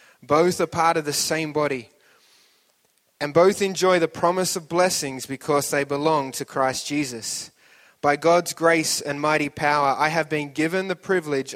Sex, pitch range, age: male, 140-165 Hz, 20-39